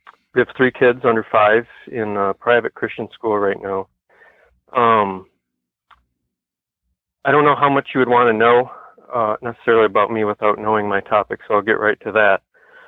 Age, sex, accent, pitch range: 40-59, male, American, 100-120 Hz